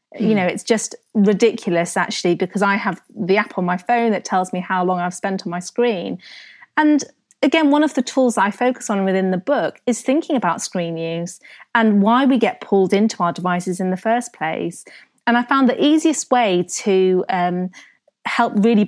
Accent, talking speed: British, 200 wpm